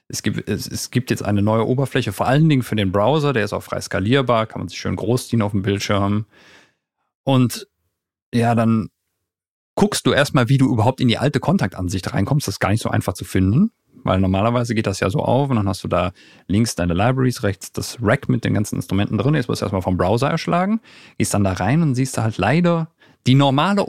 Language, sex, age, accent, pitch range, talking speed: German, male, 40-59, German, 100-140 Hz, 230 wpm